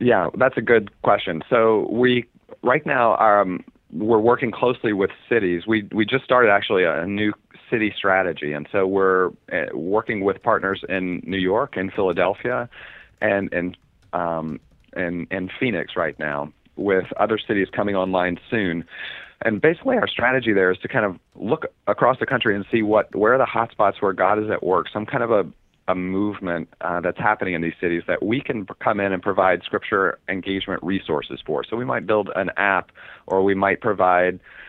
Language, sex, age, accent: English, male, 40-59, American